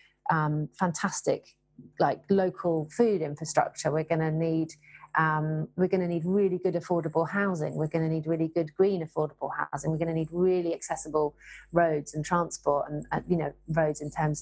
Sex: female